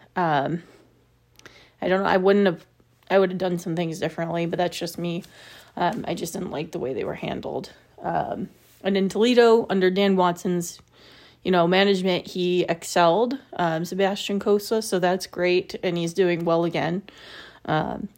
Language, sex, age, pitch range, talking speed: English, female, 30-49, 175-205 Hz, 170 wpm